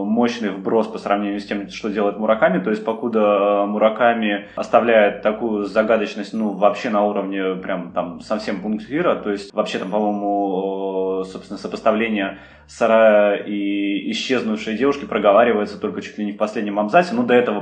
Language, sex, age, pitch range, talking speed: Russian, male, 20-39, 100-110 Hz, 160 wpm